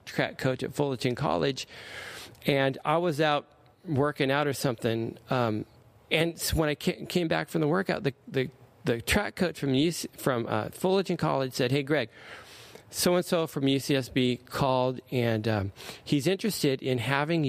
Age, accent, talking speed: 40-59, American, 160 wpm